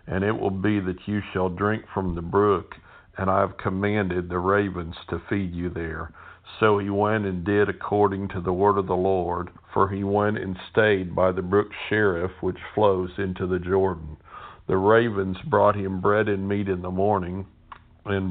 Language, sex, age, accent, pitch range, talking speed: English, male, 50-69, American, 95-105 Hz, 190 wpm